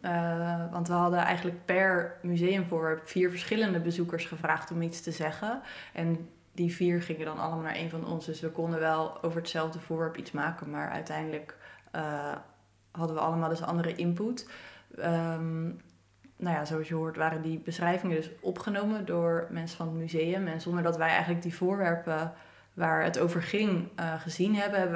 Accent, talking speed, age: Dutch, 180 wpm, 20-39